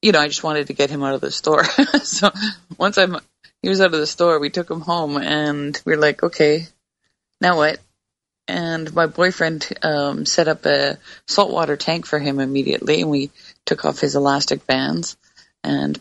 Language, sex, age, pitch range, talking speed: English, female, 20-39, 145-170 Hz, 195 wpm